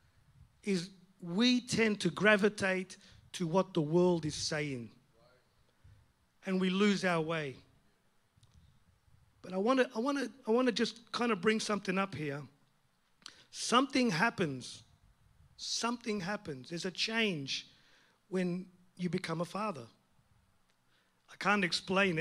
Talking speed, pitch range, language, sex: 130 wpm, 140-220 Hz, English, male